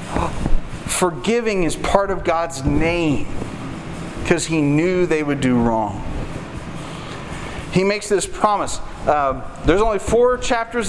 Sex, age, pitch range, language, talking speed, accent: male, 40-59, 155-205 Hz, English, 120 wpm, American